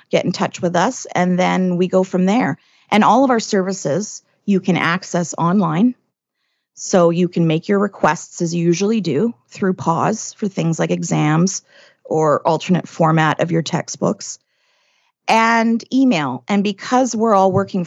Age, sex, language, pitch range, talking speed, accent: 30-49, female, English, 170-215 Hz, 165 wpm, American